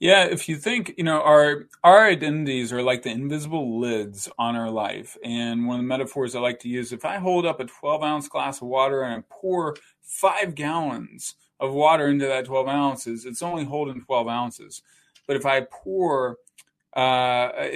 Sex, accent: male, American